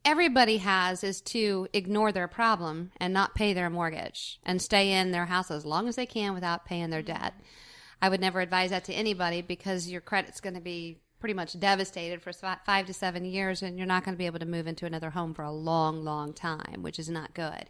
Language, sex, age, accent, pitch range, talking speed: English, female, 40-59, American, 170-200 Hz, 230 wpm